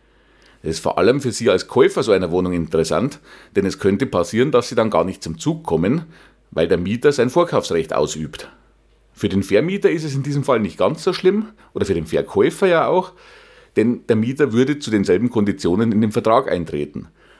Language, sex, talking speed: German, male, 205 wpm